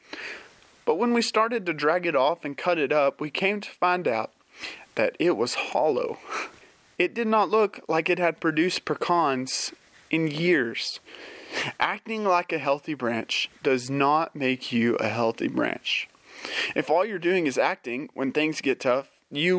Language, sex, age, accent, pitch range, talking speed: English, male, 30-49, American, 135-190 Hz, 170 wpm